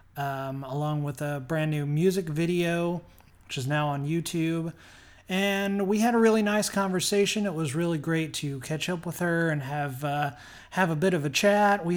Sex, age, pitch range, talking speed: male, 30-49, 145-180 Hz, 195 wpm